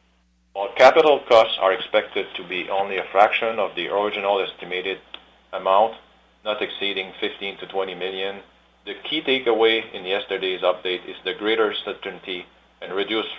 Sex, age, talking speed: male, 40-59, 150 wpm